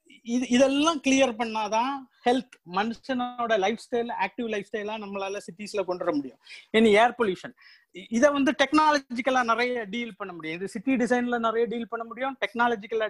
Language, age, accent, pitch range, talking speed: Tamil, 30-49, native, 210-255 Hz, 105 wpm